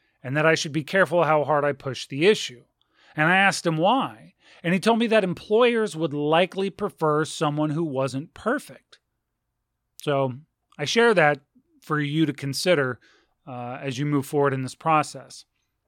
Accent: American